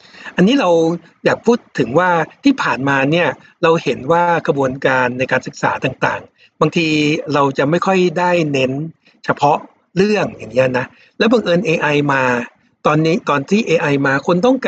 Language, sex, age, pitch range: Thai, male, 60-79, 140-180 Hz